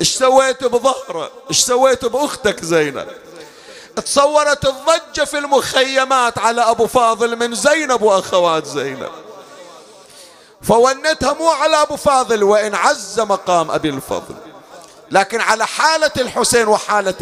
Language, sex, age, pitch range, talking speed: Arabic, male, 50-69, 235-275 Hz, 115 wpm